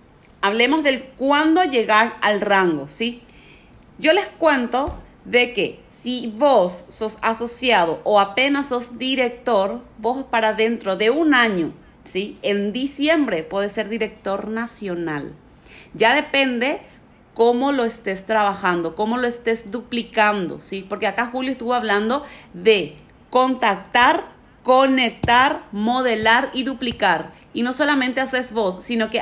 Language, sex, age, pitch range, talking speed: Spanish, female, 30-49, 210-265 Hz, 125 wpm